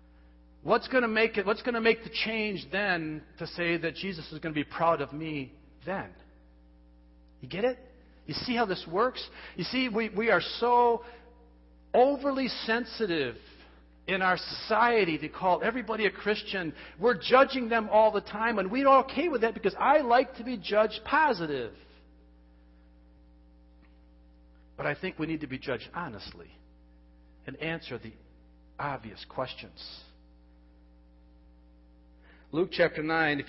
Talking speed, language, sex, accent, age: 150 wpm, English, male, American, 50-69